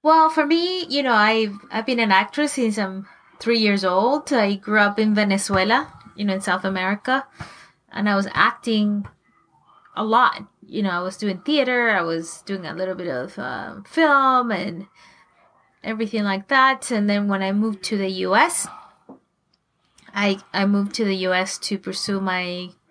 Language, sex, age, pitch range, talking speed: English, female, 20-39, 195-240 Hz, 180 wpm